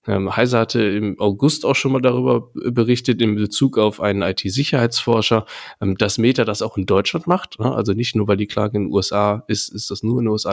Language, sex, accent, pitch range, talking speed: German, male, German, 100-120 Hz, 210 wpm